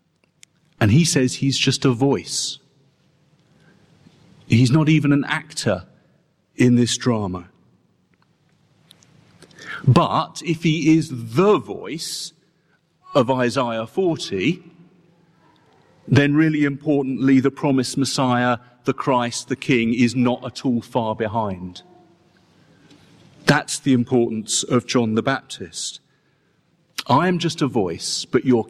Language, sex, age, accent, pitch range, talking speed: English, male, 40-59, British, 120-165 Hz, 115 wpm